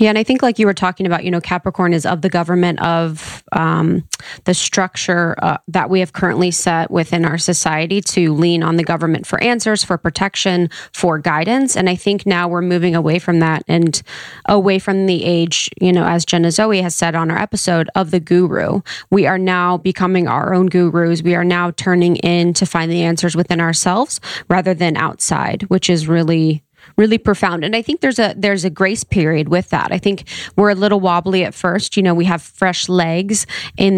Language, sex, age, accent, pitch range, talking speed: English, female, 20-39, American, 170-190 Hz, 210 wpm